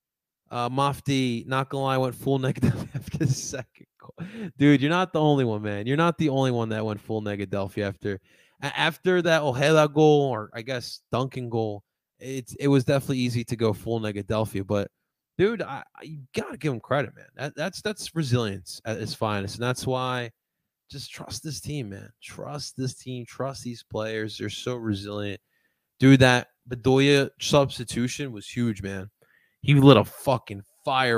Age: 20-39